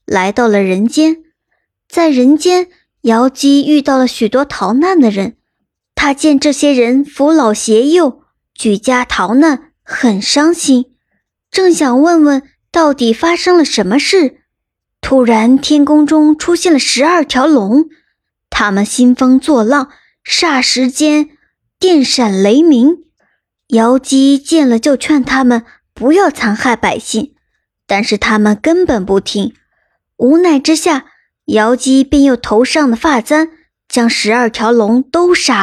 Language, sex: Chinese, male